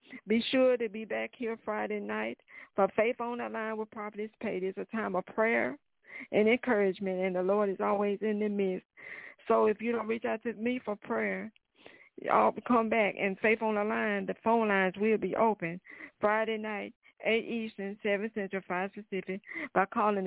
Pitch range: 190-220 Hz